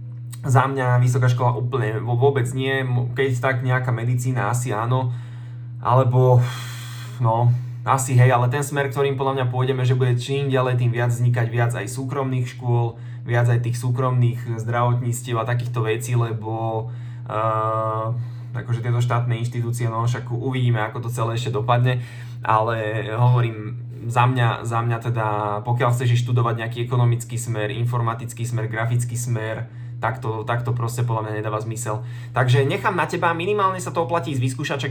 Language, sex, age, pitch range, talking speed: Slovak, male, 20-39, 115-125 Hz, 160 wpm